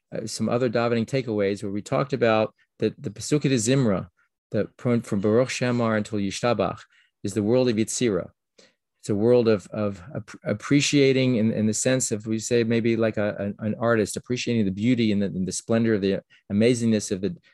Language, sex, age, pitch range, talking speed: English, male, 40-59, 105-125 Hz, 200 wpm